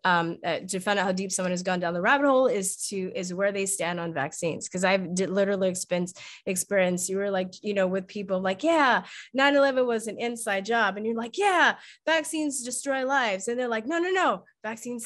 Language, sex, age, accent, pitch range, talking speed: English, female, 20-39, American, 190-245 Hz, 220 wpm